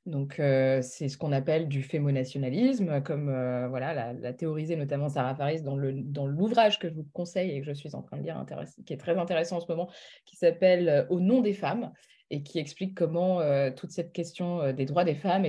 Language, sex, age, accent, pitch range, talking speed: French, female, 20-39, French, 140-180 Hz, 235 wpm